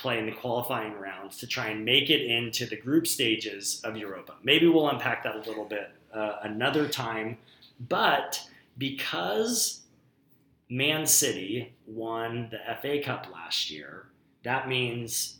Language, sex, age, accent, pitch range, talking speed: English, male, 30-49, American, 110-140 Hz, 150 wpm